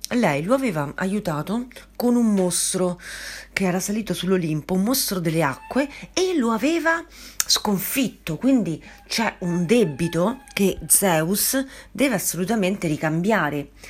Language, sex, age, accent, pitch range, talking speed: Italian, female, 40-59, native, 155-215 Hz, 120 wpm